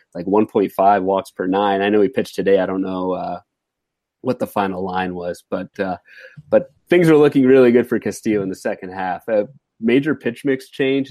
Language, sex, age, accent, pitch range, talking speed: English, male, 30-49, American, 100-125 Hz, 205 wpm